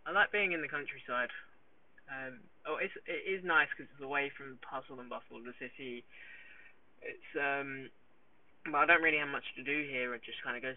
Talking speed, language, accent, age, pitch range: 225 wpm, English, British, 10-29, 120-140 Hz